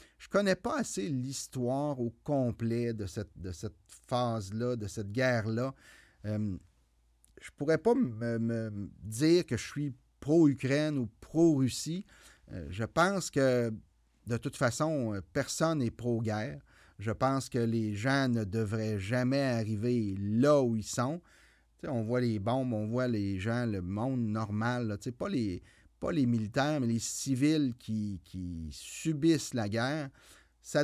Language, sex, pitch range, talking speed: French, male, 105-140 Hz, 145 wpm